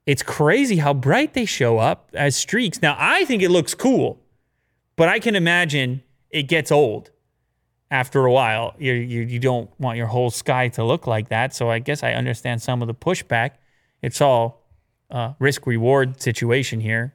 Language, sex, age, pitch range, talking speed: English, male, 30-49, 120-150 Hz, 180 wpm